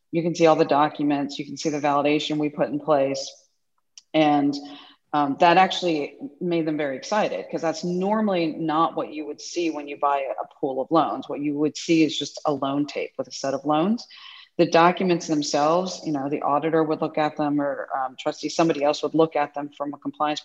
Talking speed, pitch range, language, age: 220 wpm, 145-170 Hz, English, 40-59